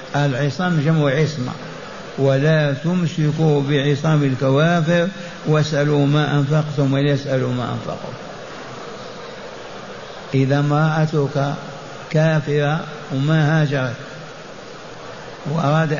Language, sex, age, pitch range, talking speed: Arabic, male, 50-69, 145-175 Hz, 75 wpm